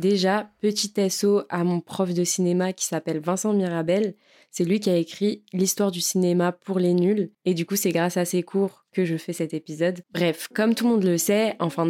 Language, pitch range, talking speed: French, 175-210 Hz, 220 wpm